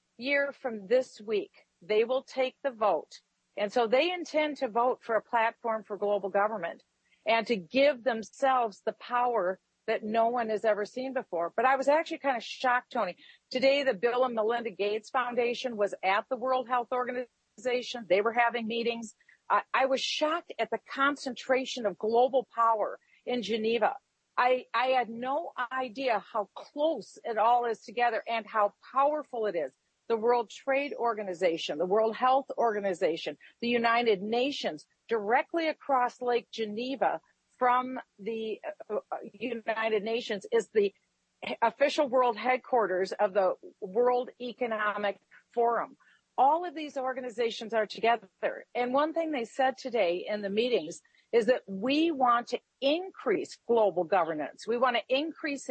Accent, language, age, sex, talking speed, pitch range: American, English, 50-69, female, 155 wpm, 220-265 Hz